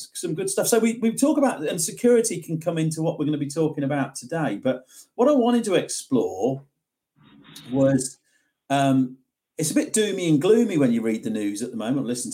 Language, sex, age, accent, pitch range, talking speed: English, male, 40-59, British, 130-195 Hz, 215 wpm